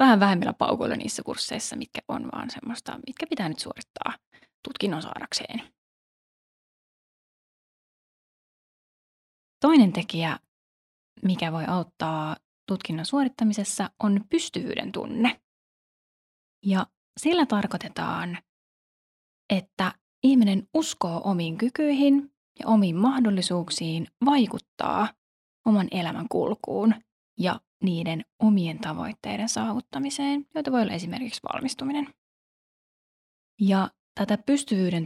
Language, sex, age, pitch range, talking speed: Finnish, female, 20-39, 185-265 Hz, 90 wpm